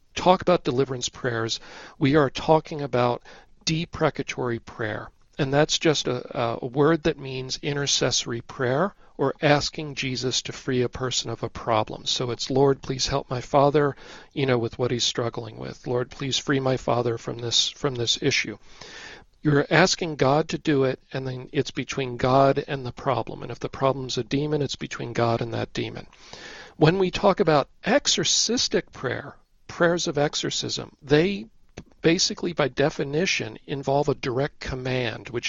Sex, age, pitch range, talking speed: male, 50-69, 125-150 Hz, 165 wpm